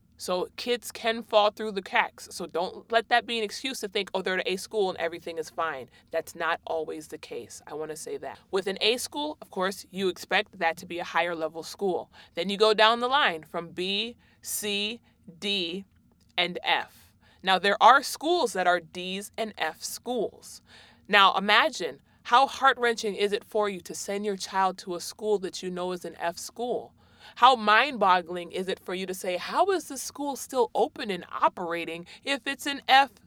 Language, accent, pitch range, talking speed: English, American, 185-255 Hz, 205 wpm